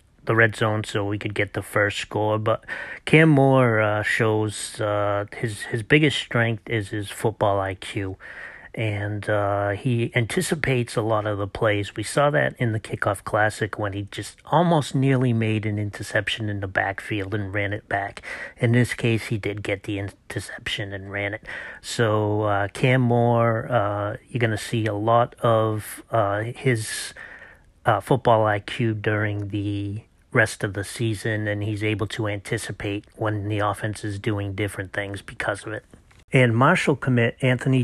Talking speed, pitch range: 170 wpm, 105-120 Hz